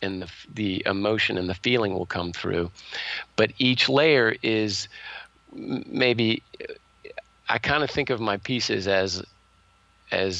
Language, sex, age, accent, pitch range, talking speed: English, male, 40-59, American, 95-110 Hz, 145 wpm